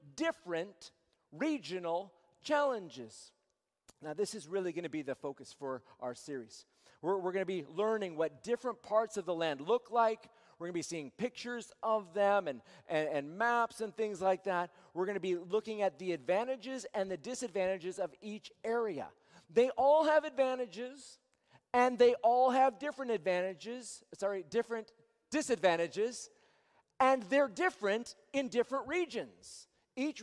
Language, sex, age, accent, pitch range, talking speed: English, male, 40-59, American, 200-270 Hz, 155 wpm